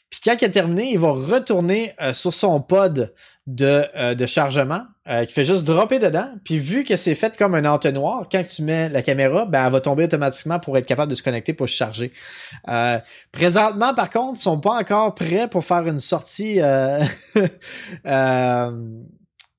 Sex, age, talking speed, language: male, 20-39, 195 wpm, French